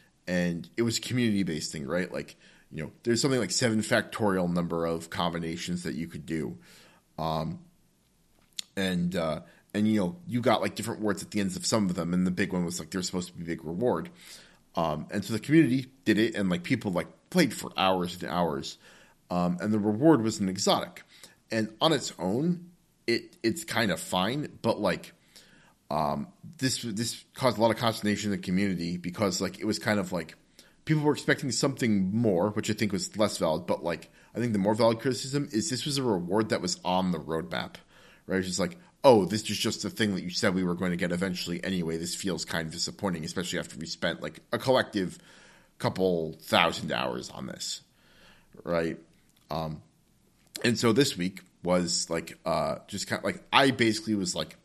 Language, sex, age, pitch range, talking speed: English, male, 30-49, 90-115 Hz, 205 wpm